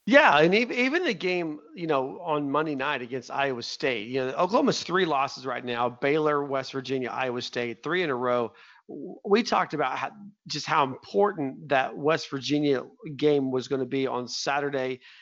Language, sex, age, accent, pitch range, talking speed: English, male, 40-59, American, 135-185 Hz, 180 wpm